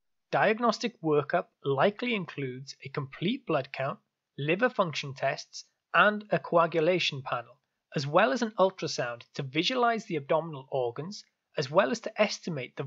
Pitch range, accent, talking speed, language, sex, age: 140-200 Hz, British, 145 wpm, English, male, 20-39